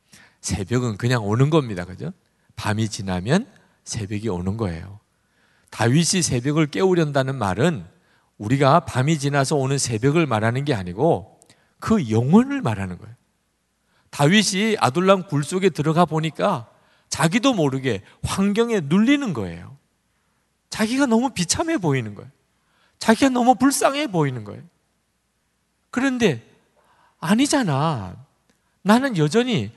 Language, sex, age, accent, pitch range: Korean, male, 40-59, native, 115-185 Hz